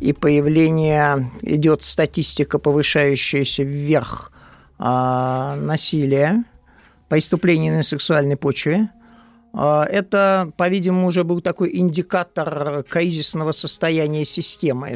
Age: 50-69